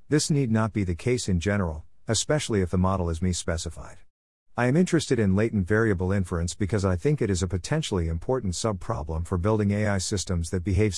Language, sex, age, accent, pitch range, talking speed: English, male, 50-69, American, 90-115 Hz, 195 wpm